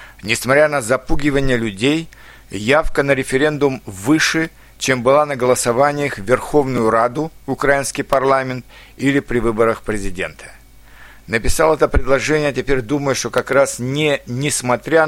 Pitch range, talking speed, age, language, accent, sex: 125-150 Hz, 120 wpm, 60-79, Russian, native, male